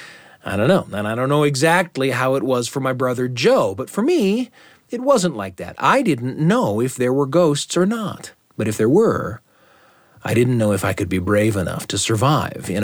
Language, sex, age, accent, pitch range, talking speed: English, male, 40-59, American, 110-160 Hz, 220 wpm